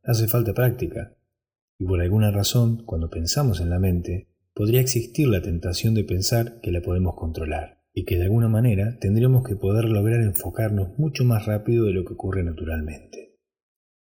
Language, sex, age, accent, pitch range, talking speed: Spanish, male, 20-39, Argentinian, 90-115 Hz, 170 wpm